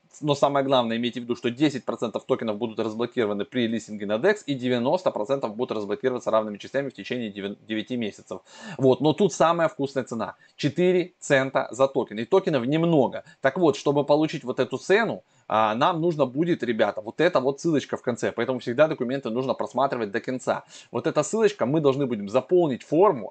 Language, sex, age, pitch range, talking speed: Russian, male, 20-39, 120-155 Hz, 180 wpm